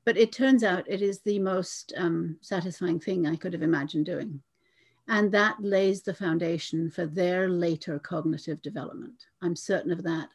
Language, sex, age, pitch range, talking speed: English, female, 60-79, 165-215 Hz, 175 wpm